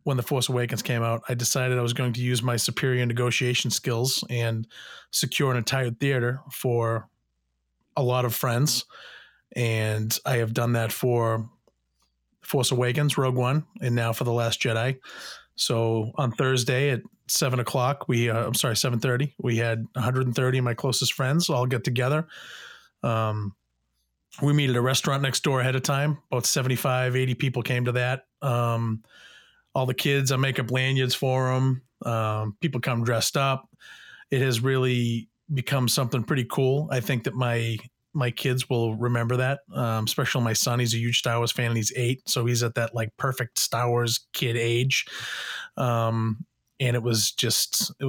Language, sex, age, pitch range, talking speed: English, male, 30-49, 115-130 Hz, 180 wpm